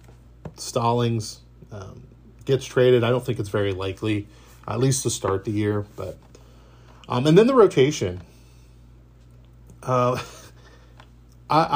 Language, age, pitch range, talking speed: English, 30-49, 95-130 Hz, 130 wpm